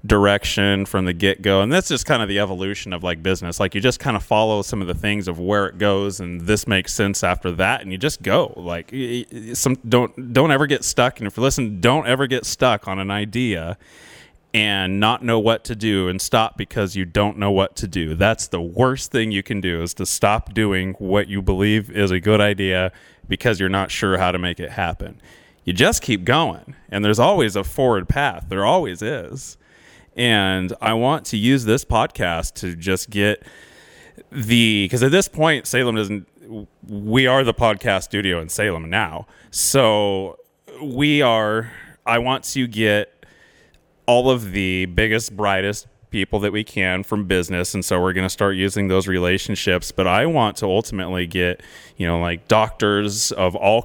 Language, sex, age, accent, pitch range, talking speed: English, male, 30-49, American, 95-115 Hz, 195 wpm